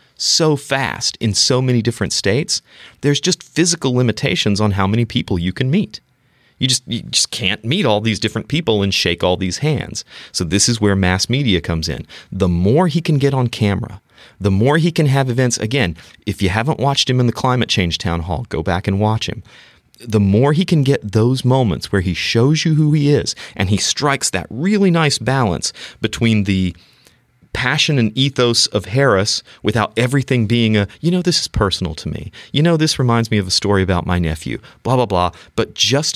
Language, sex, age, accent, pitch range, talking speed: English, male, 30-49, American, 100-135 Hz, 210 wpm